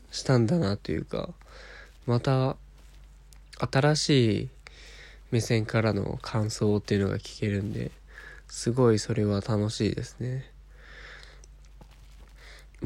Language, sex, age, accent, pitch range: Japanese, male, 20-39, native, 105-145 Hz